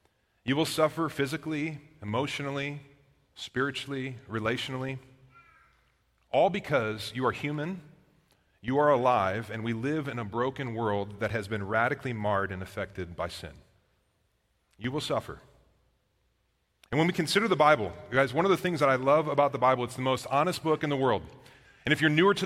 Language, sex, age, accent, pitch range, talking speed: English, male, 30-49, American, 125-165 Hz, 175 wpm